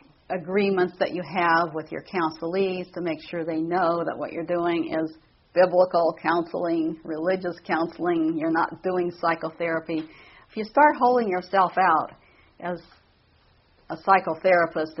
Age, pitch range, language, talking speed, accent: 50-69, 160-190 Hz, English, 135 wpm, American